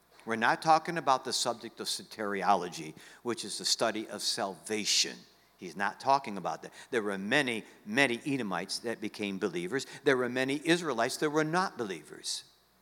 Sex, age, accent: male, 60-79, American